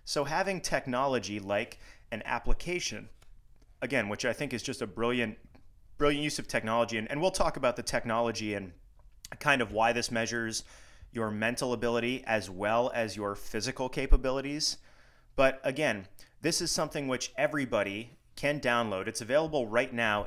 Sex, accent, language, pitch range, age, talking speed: male, American, English, 105-135 Hz, 30-49, 155 wpm